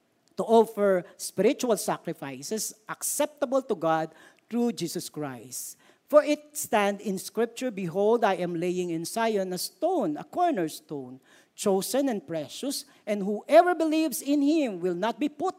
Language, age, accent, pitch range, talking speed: Filipino, 50-69, native, 180-300 Hz, 140 wpm